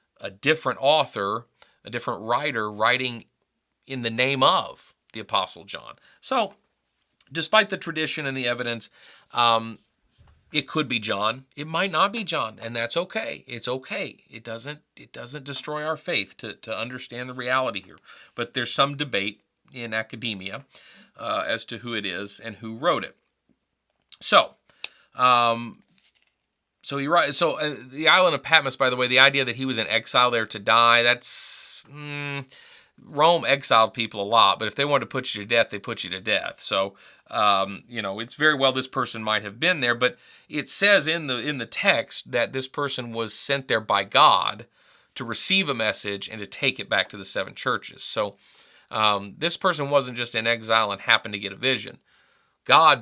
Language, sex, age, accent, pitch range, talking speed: English, male, 40-59, American, 110-140 Hz, 185 wpm